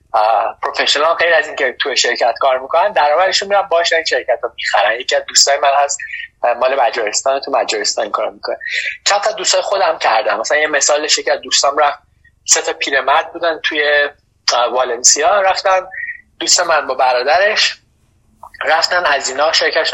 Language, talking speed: Persian, 145 wpm